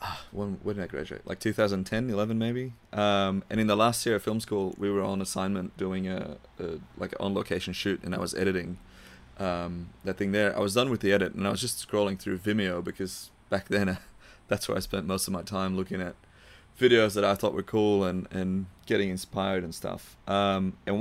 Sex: male